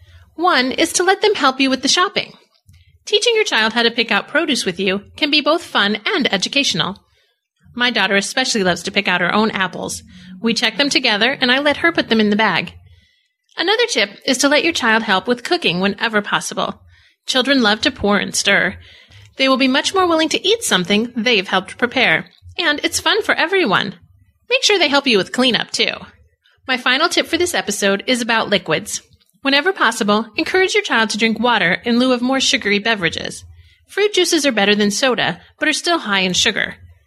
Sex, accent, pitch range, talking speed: female, American, 200-295 Hz, 205 wpm